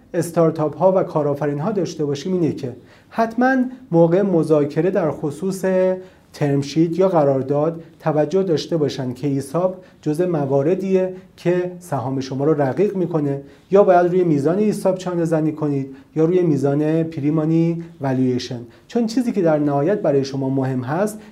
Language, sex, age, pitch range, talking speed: Persian, male, 40-59, 140-185 Hz, 145 wpm